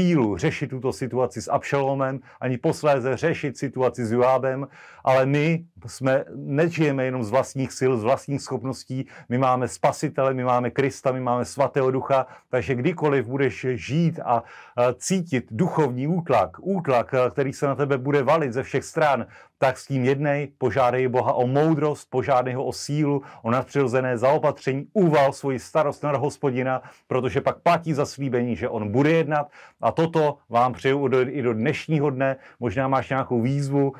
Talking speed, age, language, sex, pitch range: 160 wpm, 40-59, Slovak, male, 125-145 Hz